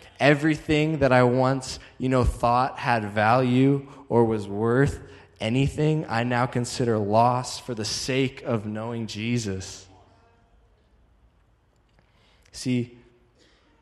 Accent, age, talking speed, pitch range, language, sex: American, 20-39, 105 wpm, 100-120 Hz, English, male